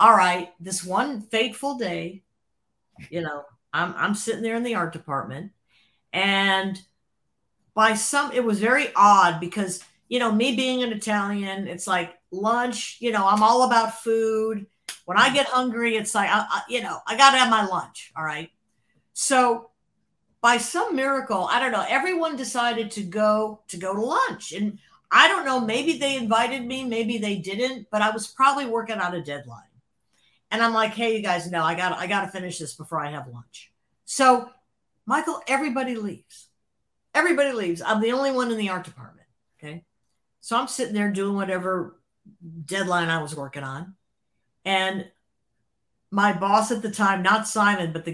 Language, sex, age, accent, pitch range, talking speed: English, female, 50-69, American, 175-250 Hz, 180 wpm